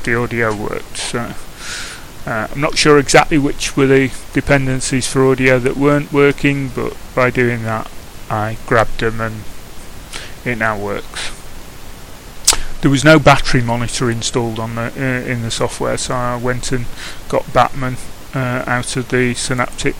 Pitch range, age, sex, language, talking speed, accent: 115-135 Hz, 30-49, male, English, 155 wpm, British